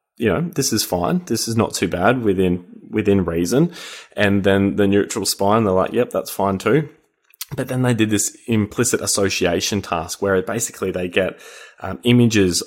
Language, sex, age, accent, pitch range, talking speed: English, male, 20-39, Australian, 90-110 Hz, 185 wpm